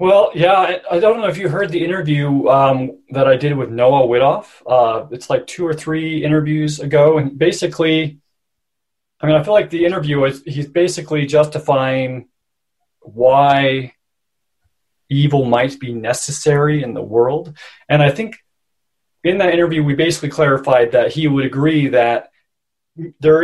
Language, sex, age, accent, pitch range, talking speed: English, male, 30-49, American, 130-160 Hz, 155 wpm